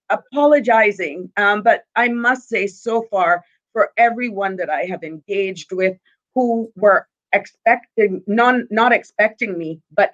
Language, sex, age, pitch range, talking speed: English, female, 40-59, 180-220 Hz, 130 wpm